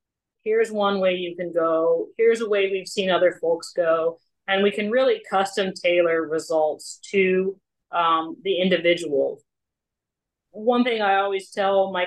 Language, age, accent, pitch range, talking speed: English, 30-49, American, 165-205 Hz, 150 wpm